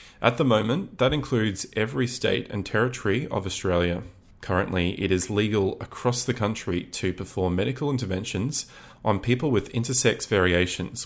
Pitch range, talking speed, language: 90-115 Hz, 145 wpm, English